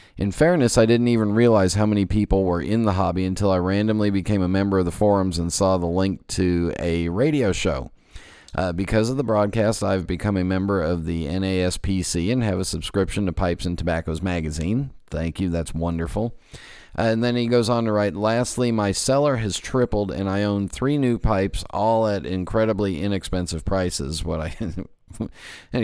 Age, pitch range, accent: 40-59, 90-115 Hz, American